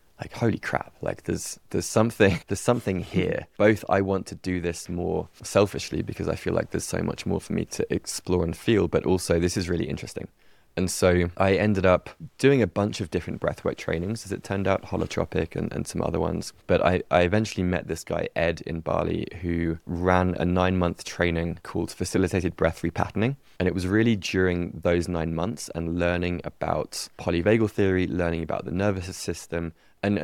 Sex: male